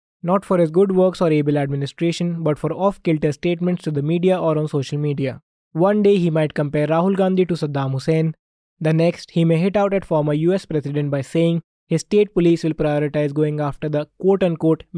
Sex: male